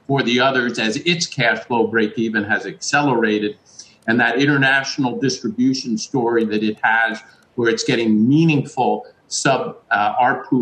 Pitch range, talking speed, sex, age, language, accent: 110-145 Hz, 145 wpm, male, 50-69, English, American